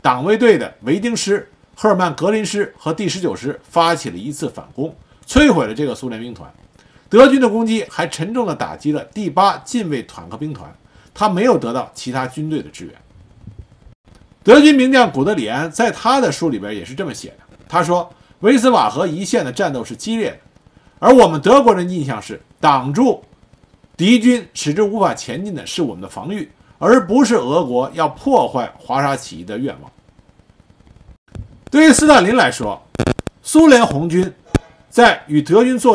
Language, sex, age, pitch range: Chinese, male, 50-69, 150-245 Hz